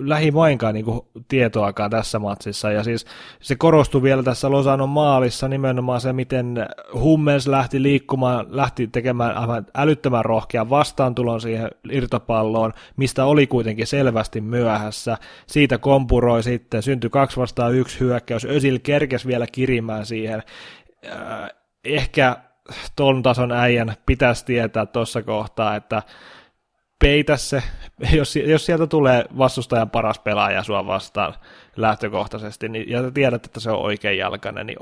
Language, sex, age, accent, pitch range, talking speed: Finnish, male, 20-39, native, 110-135 Hz, 130 wpm